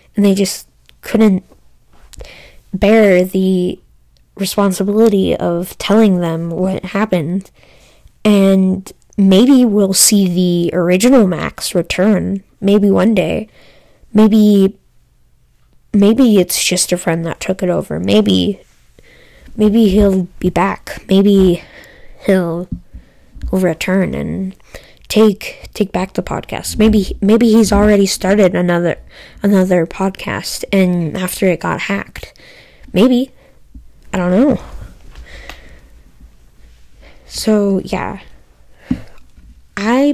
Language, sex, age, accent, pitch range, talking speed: English, female, 10-29, American, 170-205 Hz, 100 wpm